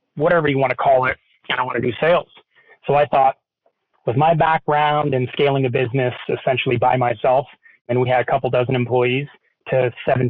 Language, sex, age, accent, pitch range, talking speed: English, male, 30-49, American, 125-150 Hz, 205 wpm